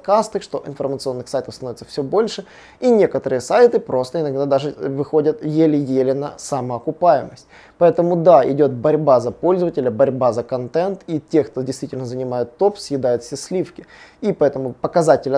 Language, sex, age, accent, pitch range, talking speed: Russian, male, 20-39, native, 125-175 Hz, 145 wpm